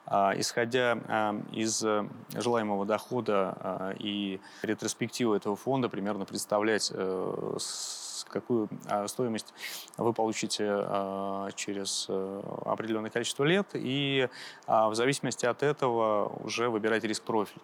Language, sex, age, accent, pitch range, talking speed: Russian, male, 20-39, native, 105-120 Hz, 90 wpm